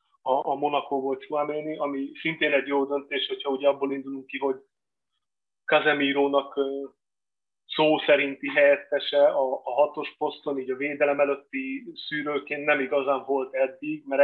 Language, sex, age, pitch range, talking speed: Hungarian, male, 30-49, 140-150 Hz, 140 wpm